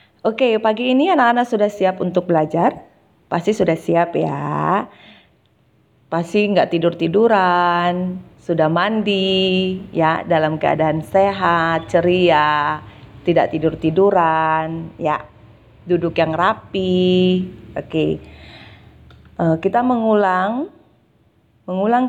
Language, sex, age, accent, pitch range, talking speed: Indonesian, female, 30-49, native, 160-200 Hz, 100 wpm